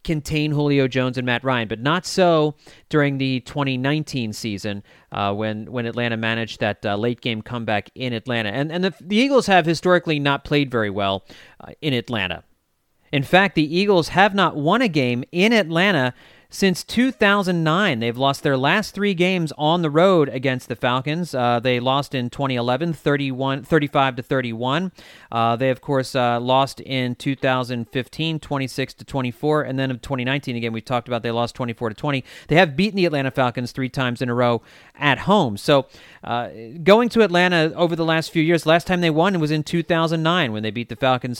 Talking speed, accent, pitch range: 190 wpm, American, 125-175 Hz